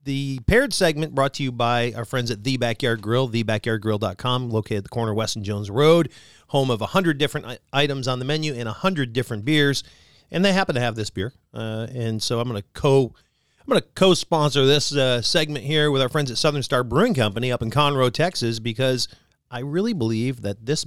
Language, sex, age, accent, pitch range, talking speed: English, male, 40-59, American, 115-150 Hz, 220 wpm